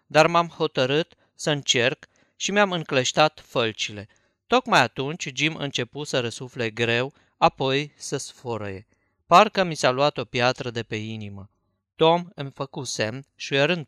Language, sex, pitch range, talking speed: Romanian, male, 120-160 Hz, 145 wpm